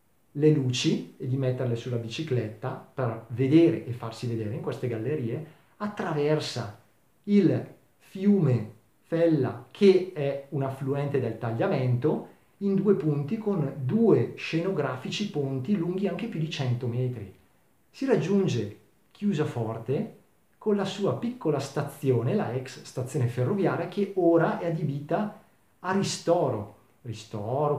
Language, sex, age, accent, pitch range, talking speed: Italian, male, 40-59, native, 125-175 Hz, 125 wpm